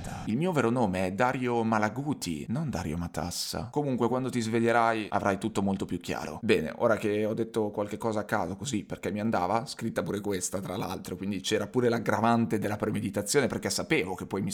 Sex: male